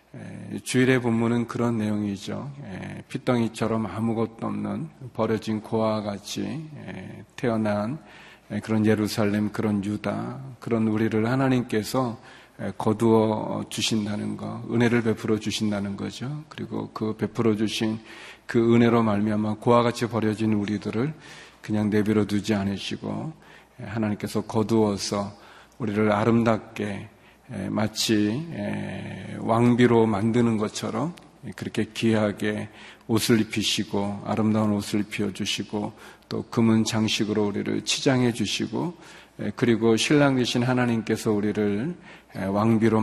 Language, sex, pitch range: Korean, male, 105-115 Hz